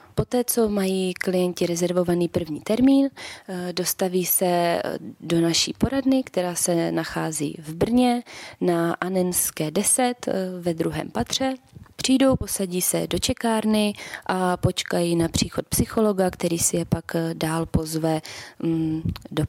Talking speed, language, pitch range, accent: 125 wpm, Czech, 170-200 Hz, native